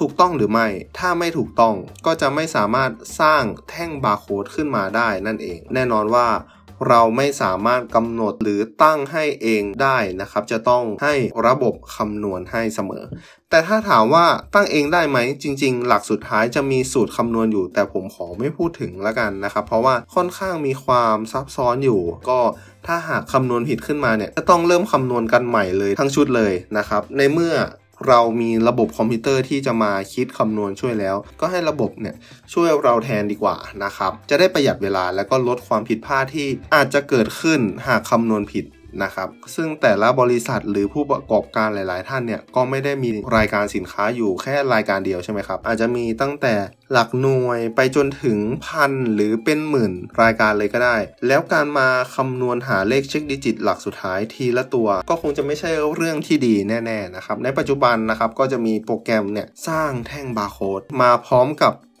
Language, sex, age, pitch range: English, male, 20-39, 110-140 Hz